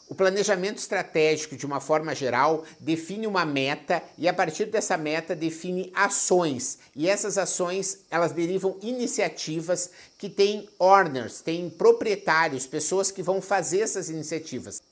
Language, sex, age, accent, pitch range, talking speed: Portuguese, male, 50-69, Brazilian, 160-200 Hz, 135 wpm